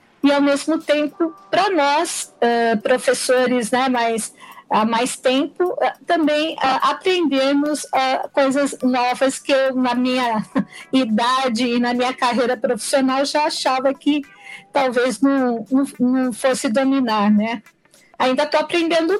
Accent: Brazilian